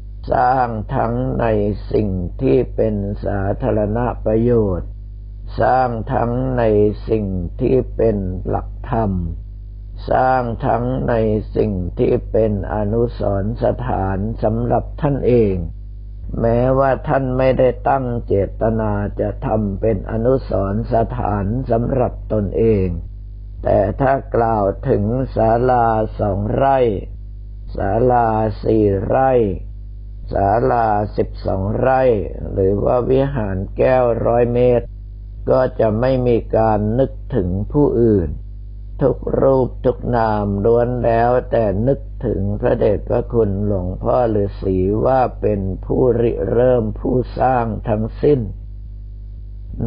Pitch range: 100-120 Hz